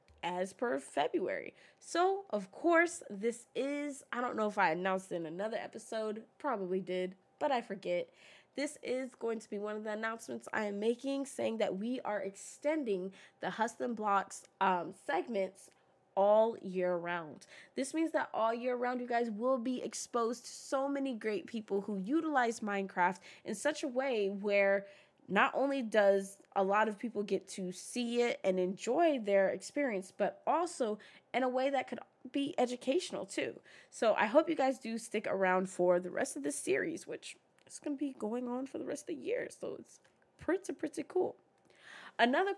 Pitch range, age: 200-280 Hz, 20-39